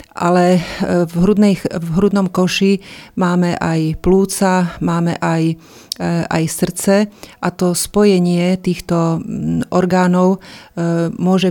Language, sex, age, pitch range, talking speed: Slovak, female, 30-49, 170-185 Hz, 95 wpm